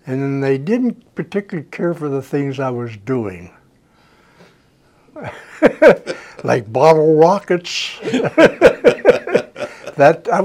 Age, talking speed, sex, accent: 60-79, 100 wpm, male, American